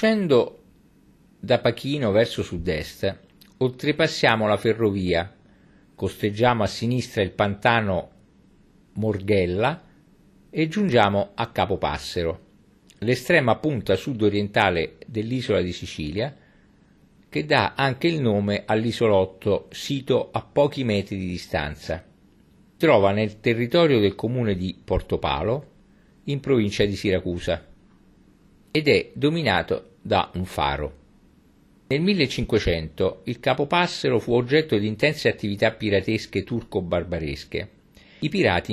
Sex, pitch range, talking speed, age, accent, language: male, 95-130 Hz, 105 wpm, 50-69, native, Italian